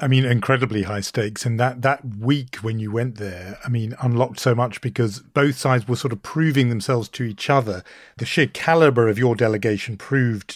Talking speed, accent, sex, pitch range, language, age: 205 wpm, British, male, 115-140 Hz, English, 40-59